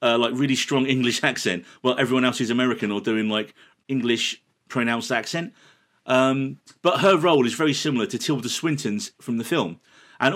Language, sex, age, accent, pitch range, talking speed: English, male, 40-59, British, 115-150 Hz, 180 wpm